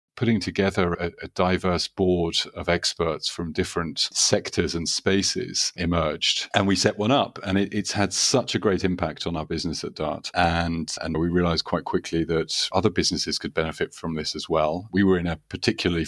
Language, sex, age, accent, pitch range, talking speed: English, male, 40-59, British, 85-95 Hz, 195 wpm